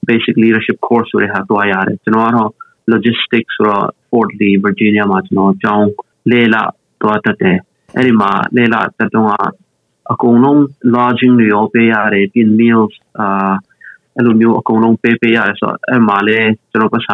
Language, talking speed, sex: English, 115 wpm, male